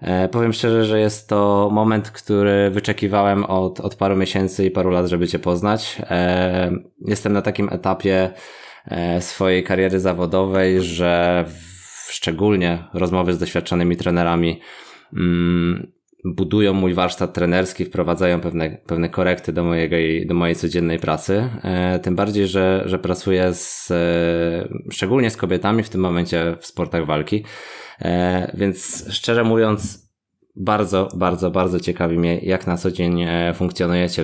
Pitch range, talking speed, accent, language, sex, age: 85-100 Hz, 130 wpm, native, Polish, male, 20-39